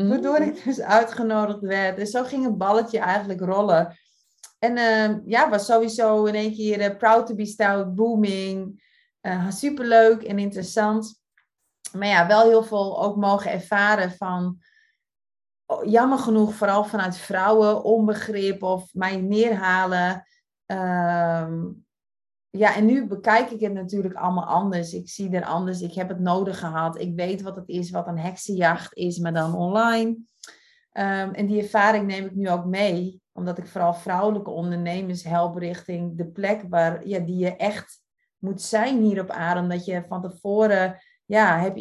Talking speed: 165 wpm